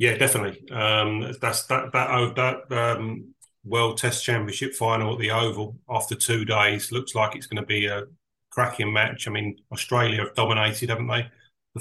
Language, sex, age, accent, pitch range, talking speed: English, male, 30-49, British, 110-125 Hz, 180 wpm